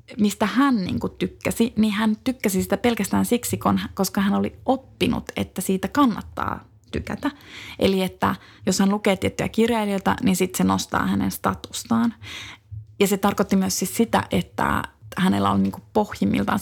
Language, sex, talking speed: Finnish, female, 155 wpm